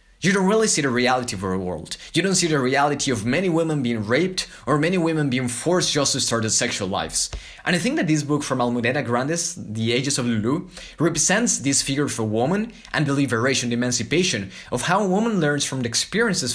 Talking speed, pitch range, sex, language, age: 220 wpm, 120-165 Hz, male, English, 20-39